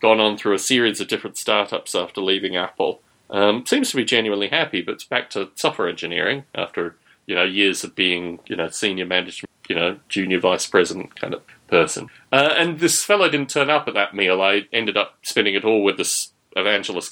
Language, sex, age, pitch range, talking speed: English, male, 30-49, 100-165 Hz, 210 wpm